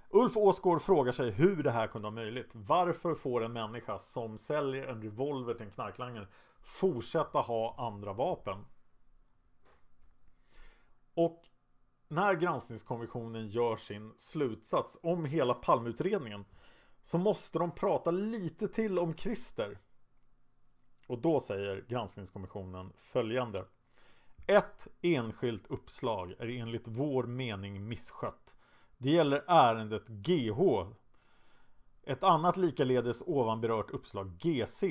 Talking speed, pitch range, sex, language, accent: 110 wpm, 110-165 Hz, male, Swedish, Norwegian